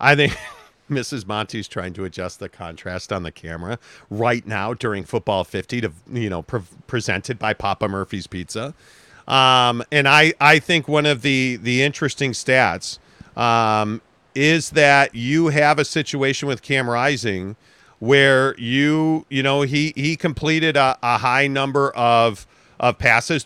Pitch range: 120-150 Hz